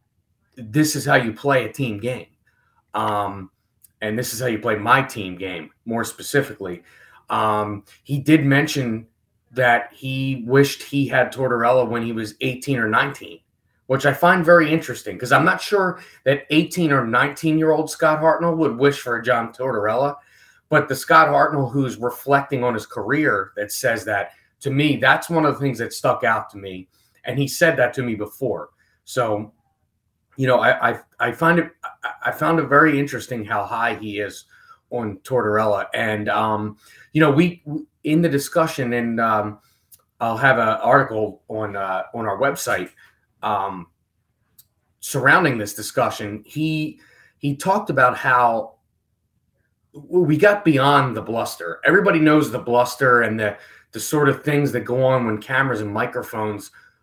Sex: male